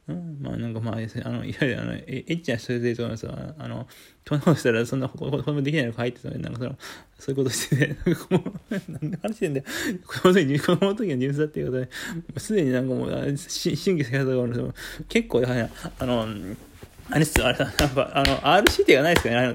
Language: Japanese